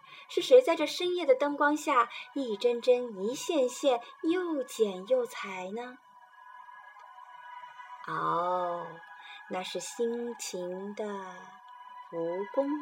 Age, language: 20-39, Chinese